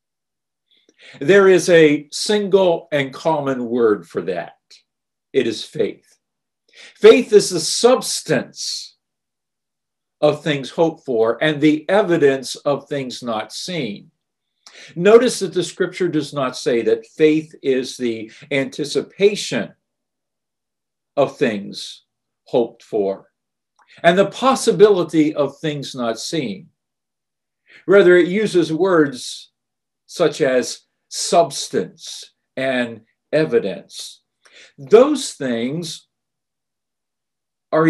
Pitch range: 135-190 Hz